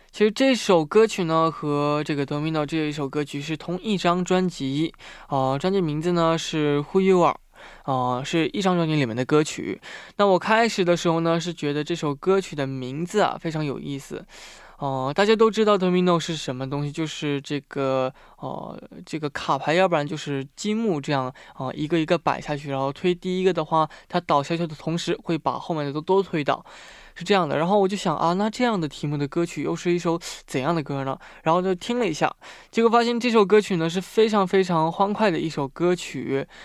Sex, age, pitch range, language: male, 20-39, 145-190 Hz, Korean